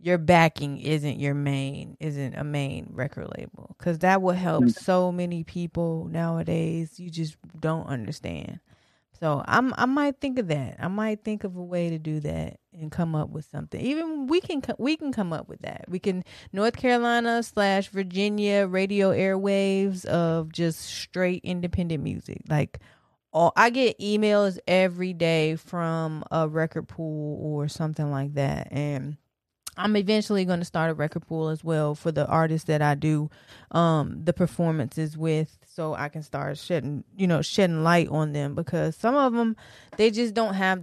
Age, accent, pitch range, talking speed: 20-39, American, 155-185 Hz, 175 wpm